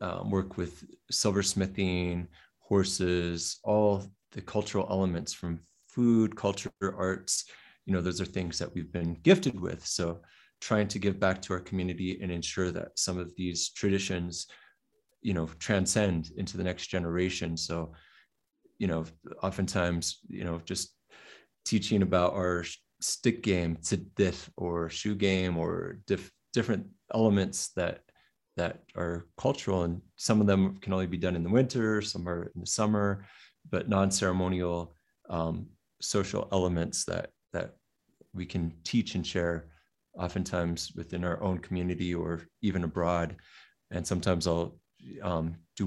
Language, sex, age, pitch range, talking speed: English, male, 30-49, 85-95 Hz, 140 wpm